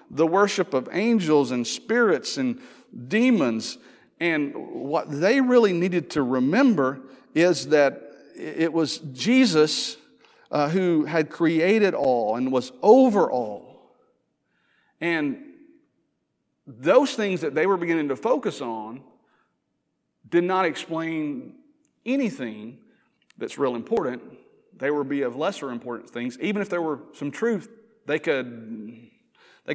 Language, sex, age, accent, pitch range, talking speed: English, male, 40-59, American, 125-185 Hz, 125 wpm